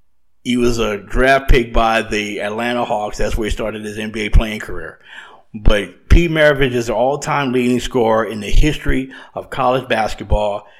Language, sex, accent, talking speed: English, male, American, 180 wpm